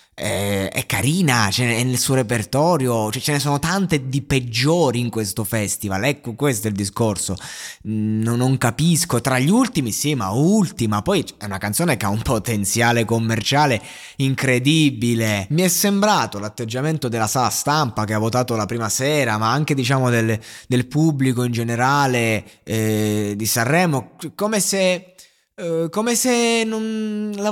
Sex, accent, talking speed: male, native, 155 wpm